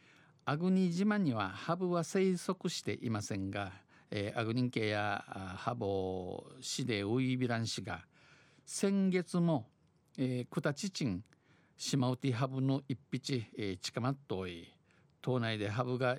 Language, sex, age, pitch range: Japanese, male, 50-69, 110-150 Hz